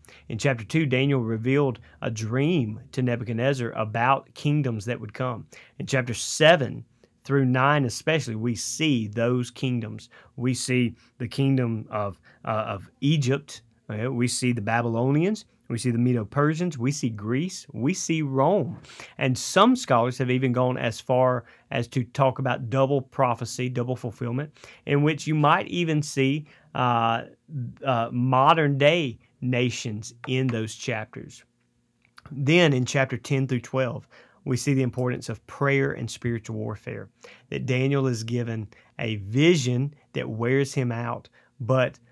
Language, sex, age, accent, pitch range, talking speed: English, male, 30-49, American, 115-135 Hz, 145 wpm